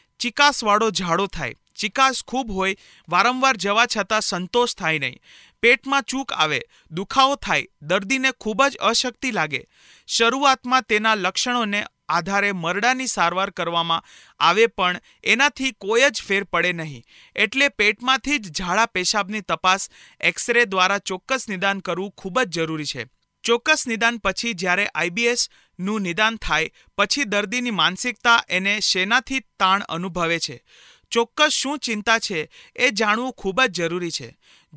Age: 40-59